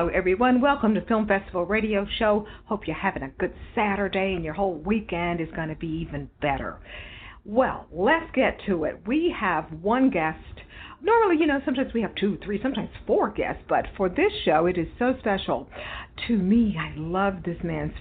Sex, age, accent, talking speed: female, 50-69, American, 195 wpm